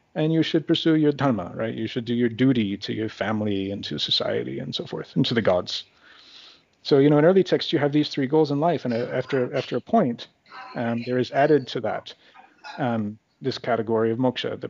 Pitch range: 105-130 Hz